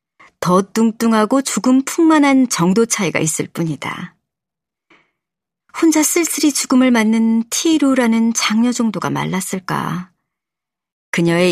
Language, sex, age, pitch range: Korean, male, 40-59, 170-235 Hz